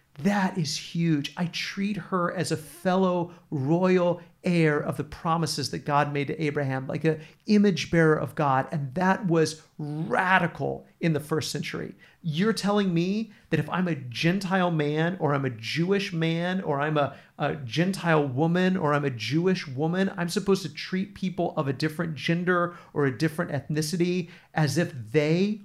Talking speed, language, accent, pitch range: 175 wpm, English, American, 150-175 Hz